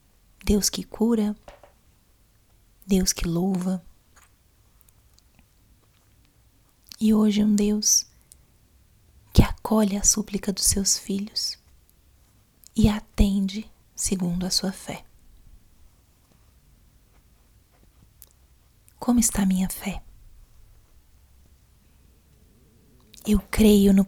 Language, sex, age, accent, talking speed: Portuguese, female, 20-39, Brazilian, 75 wpm